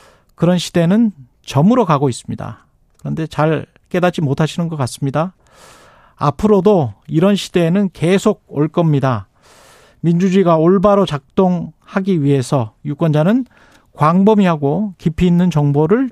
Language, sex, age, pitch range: Korean, male, 40-59, 150-200 Hz